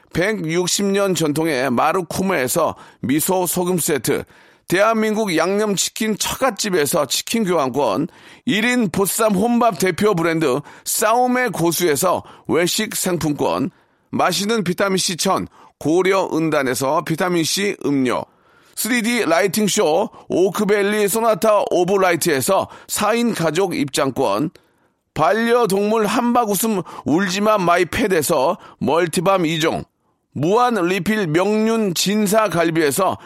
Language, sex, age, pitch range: Korean, male, 40-59, 180-230 Hz